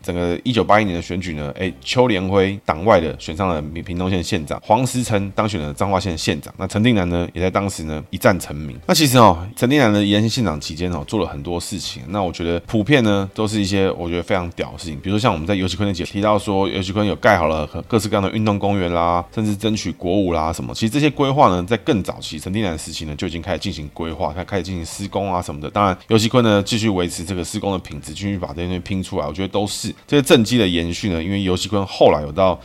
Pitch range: 85-110 Hz